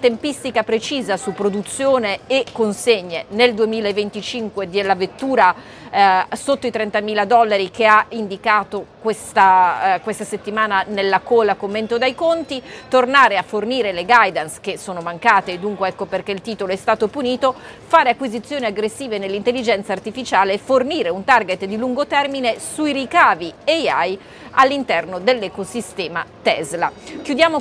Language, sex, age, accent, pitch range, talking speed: Italian, female, 30-49, native, 195-245 Hz, 135 wpm